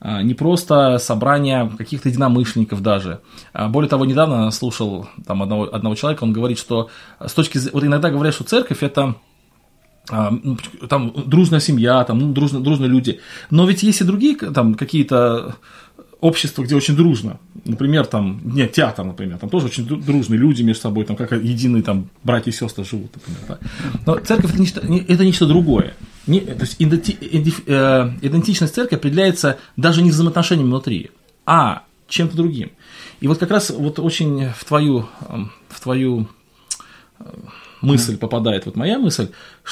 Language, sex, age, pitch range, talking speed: Russian, male, 20-39, 115-165 Hz, 150 wpm